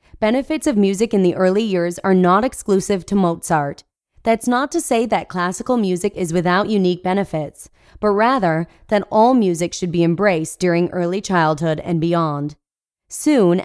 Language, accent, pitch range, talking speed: English, American, 170-215 Hz, 165 wpm